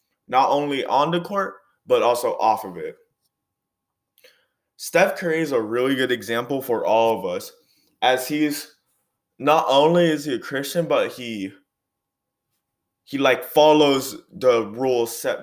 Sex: male